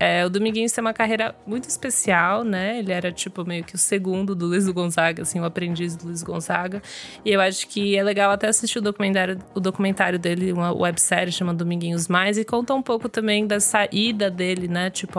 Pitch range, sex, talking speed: 175-215 Hz, female, 210 wpm